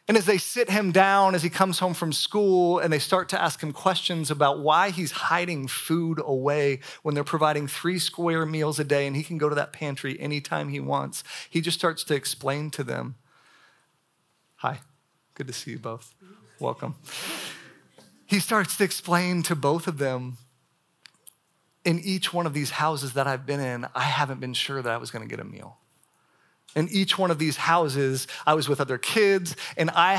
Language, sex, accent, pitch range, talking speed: English, male, American, 130-165 Hz, 200 wpm